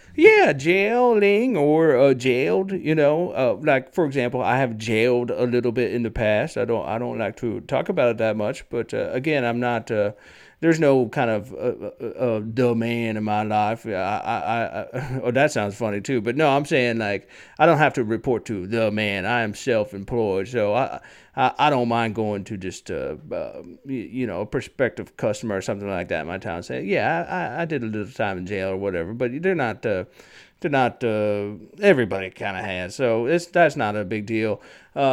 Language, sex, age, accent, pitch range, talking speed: English, male, 40-59, American, 105-135 Hz, 215 wpm